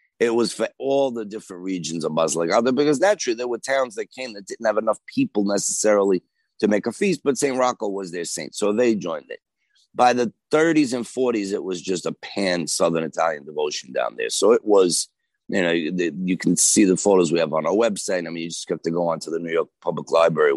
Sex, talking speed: male, 230 wpm